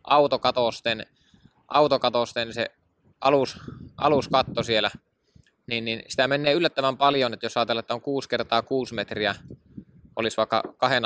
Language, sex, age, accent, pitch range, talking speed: Finnish, male, 20-39, native, 105-125 Hz, 130 wpm